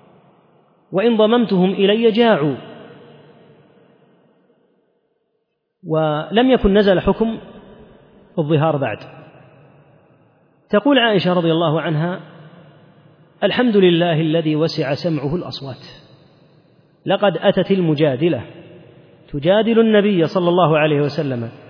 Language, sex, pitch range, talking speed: Arabic, male, 145-200 Hz, 85 wpm